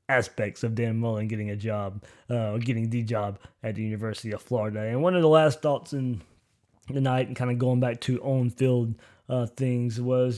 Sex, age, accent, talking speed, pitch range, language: male, 20-39, American, 195 wpm, 110-140 Hz, English